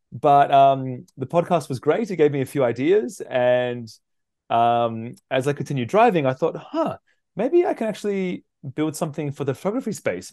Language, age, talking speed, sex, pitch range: English, 20-39, 180 wpm, male, 125-155 Hz